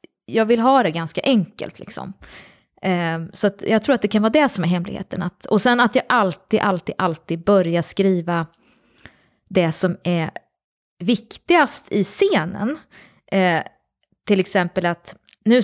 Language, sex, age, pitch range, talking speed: Swedish, female, 20-39, 170-205 Hz, 155 wpm